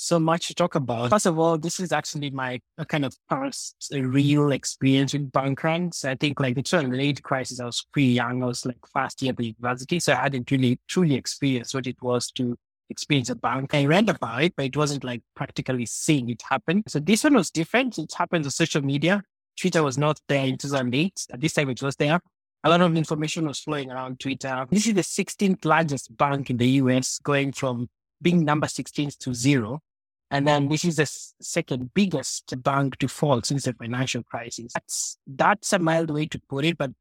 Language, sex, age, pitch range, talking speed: English, male, 20-39, 130-160 Hz, 220 wpm